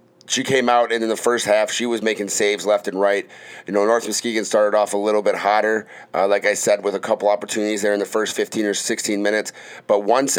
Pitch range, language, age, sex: 100-115 Hz, English, 30-49, male